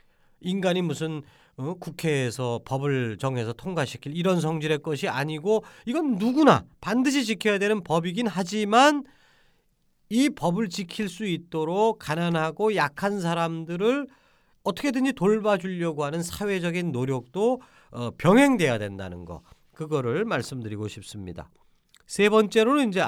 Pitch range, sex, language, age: 150-220 Hz, male, Korean, 40-59